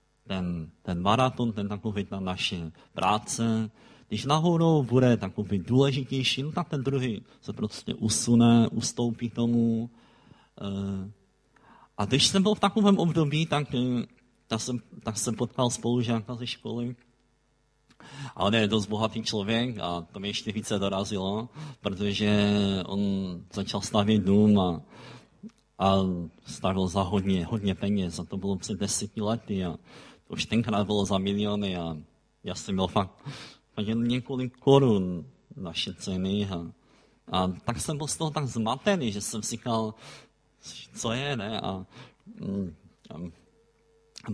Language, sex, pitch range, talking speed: Czech, male, 95-125 Hz, 135 wpm